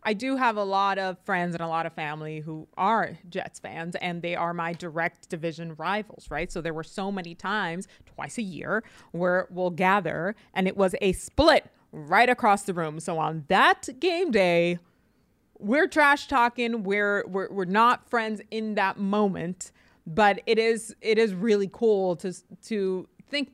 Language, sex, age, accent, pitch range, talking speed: English, female, 30-49, American, 175-220 Hz, 180 wpm